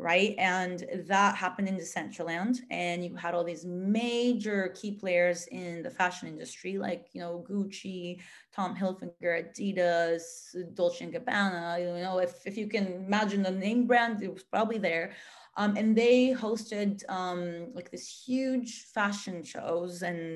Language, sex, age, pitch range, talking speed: English, female, 30-49, 175-210 Hz, 155 wpm